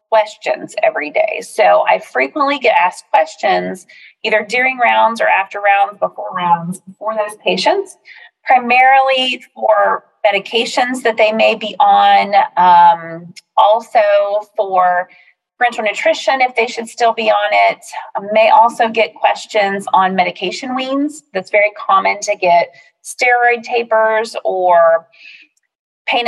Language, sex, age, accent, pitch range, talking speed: English, female, 30-49, American, 200-280 Hz, 130 wpm